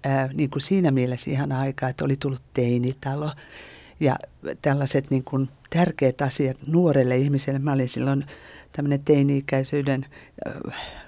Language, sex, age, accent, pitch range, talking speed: Finnish, female, 50-69, native, 135-155 Hz, 135 wpm